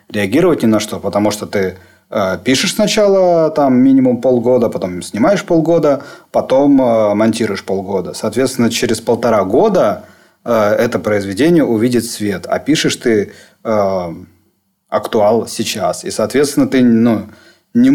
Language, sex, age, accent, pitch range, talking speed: Russian, male, 30-49, native, 105-145 Hz, 135 wpm